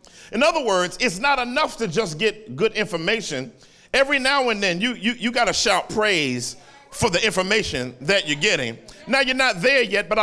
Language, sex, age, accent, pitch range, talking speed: English, male, 40-59, American, 195-255 Hz, 200 wpm